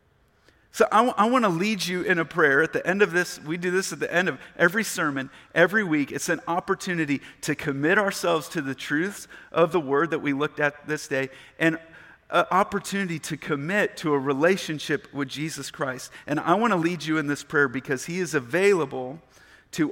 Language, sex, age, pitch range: English, male, 40-59, 135-175 Hz